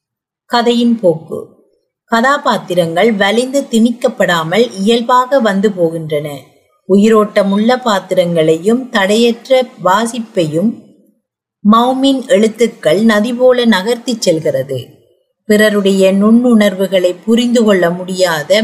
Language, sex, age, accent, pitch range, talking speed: Tamil, female, 30-49, native, 190-240 Hz, 70 wpm